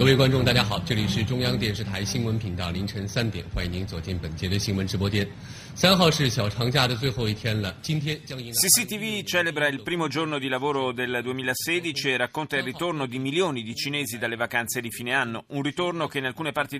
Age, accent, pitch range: 30-49, native, 115-145 Hz